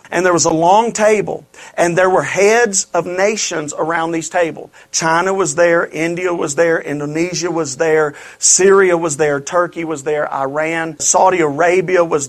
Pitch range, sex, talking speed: 155-190 Hz, male, 165 wpm